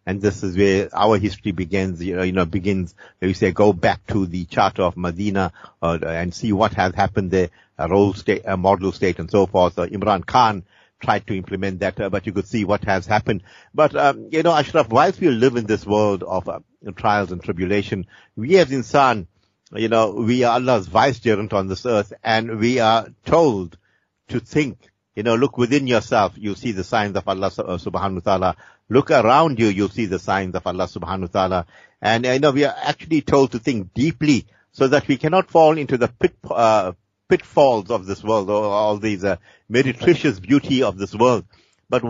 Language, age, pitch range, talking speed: English, 50-69, 100-130 Hz, 210 wpm